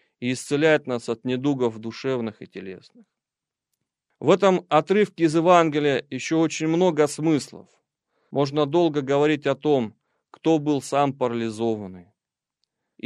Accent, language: native, Russian